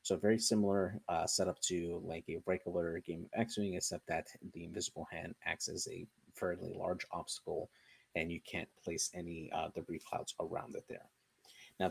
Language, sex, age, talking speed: English, male, 30-49, 175 wpm